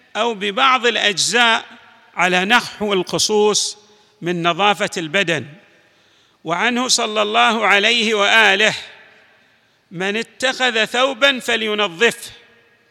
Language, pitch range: Arabic, 200-235 Hz